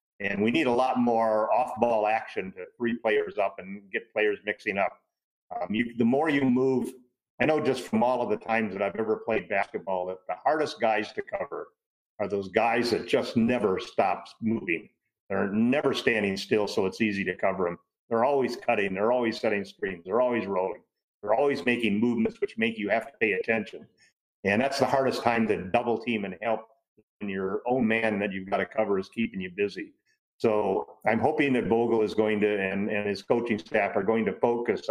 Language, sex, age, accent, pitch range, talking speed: English, male, 50-69, American, 100-120 Hz, 205 wpm